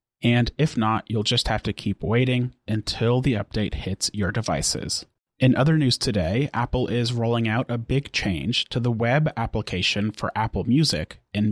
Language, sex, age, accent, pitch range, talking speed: English, male, 30-49, American, 110-125 Hz, 175 wpm